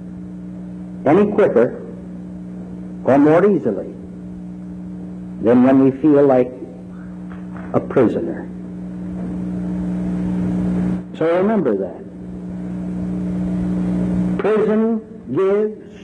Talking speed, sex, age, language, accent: 65 wpm, male, 60-79, English, American